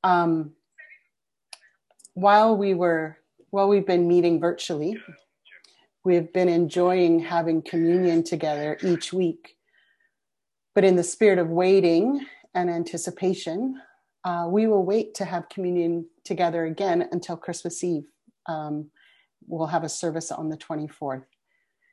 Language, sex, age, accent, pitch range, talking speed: English, female, 30-49, American, 165-190 Hz, 125 wpm